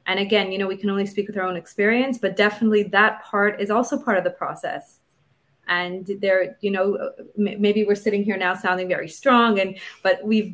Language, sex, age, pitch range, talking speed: English, female, 30-49, 185-215 Hz, 210 wpm